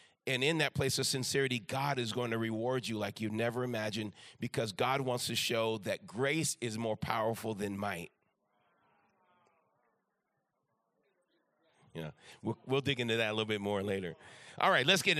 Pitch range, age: 120-155 Hz, 40-59